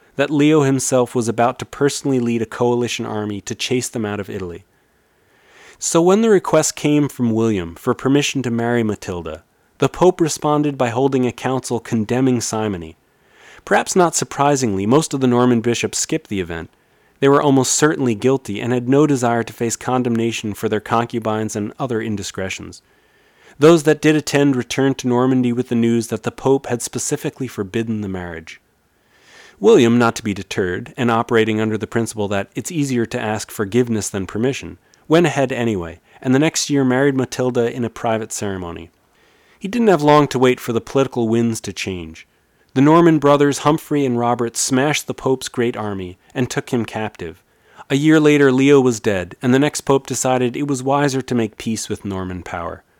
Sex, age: male, 30-49